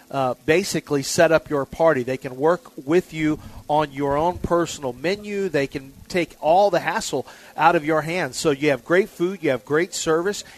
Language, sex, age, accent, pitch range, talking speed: English, male, 40-59, American, 140-175 Hz, 200 wpm